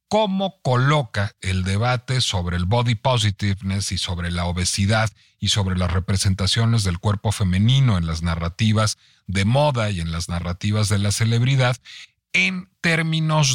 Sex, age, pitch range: male, 40-59, 95-140 Hz